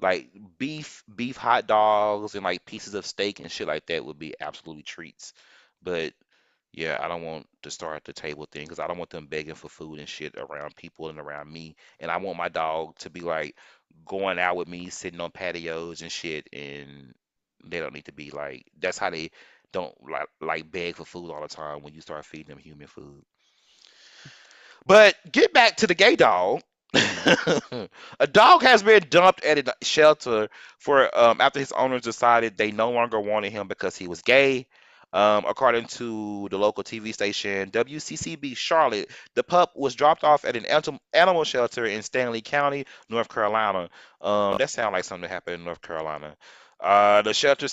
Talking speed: 190 wpm